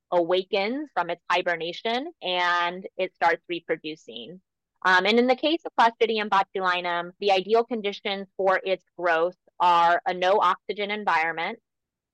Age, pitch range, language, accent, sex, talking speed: 20-39, 175-210 Hz, English, American, female, 135 wpm